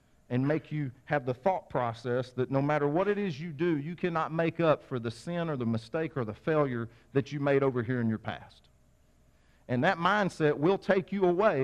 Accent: American